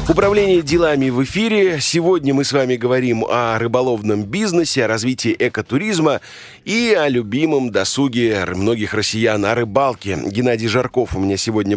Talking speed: 145 wpm